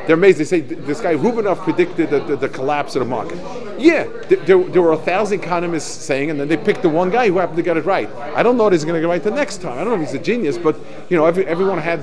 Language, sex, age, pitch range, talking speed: English, male, 50-69, 145-190 Hz, 295 wpm